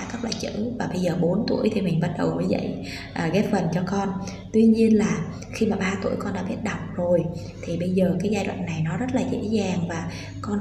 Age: 20-39